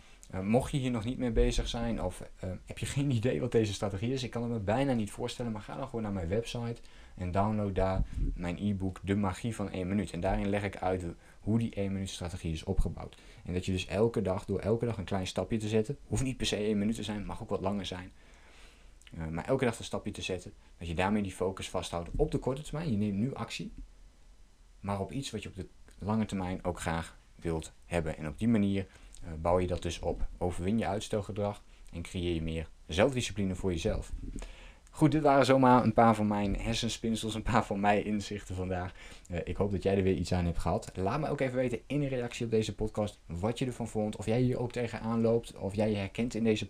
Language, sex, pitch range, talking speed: Dutch, male, 90-115 Hz, 240 wpm